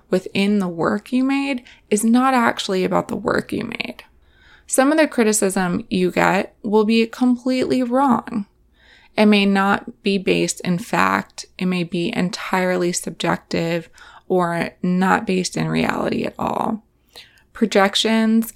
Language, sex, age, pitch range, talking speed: English, female, 20-39, 175-225 Hz, 140 wpm